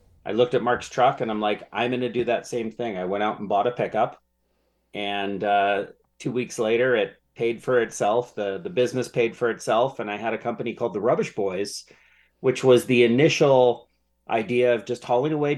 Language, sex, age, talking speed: English, male, 30-49, 210 wpm